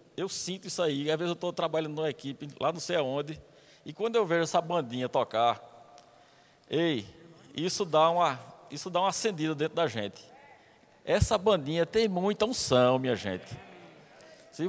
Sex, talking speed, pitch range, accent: male, 170 wpm, 145-200 Hz, Brazilian